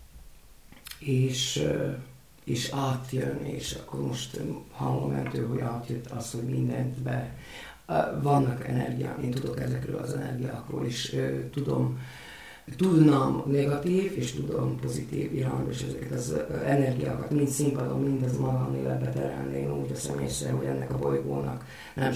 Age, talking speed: 50-69, 125 wpm